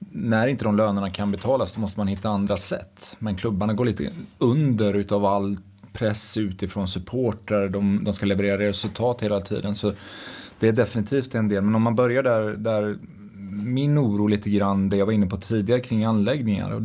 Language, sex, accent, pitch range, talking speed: English, male, Swedish, 100-115 Hz, 190 wpm